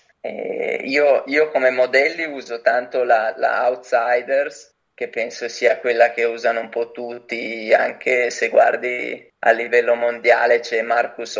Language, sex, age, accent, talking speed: Italian, male, 20-39, native, 135 wpm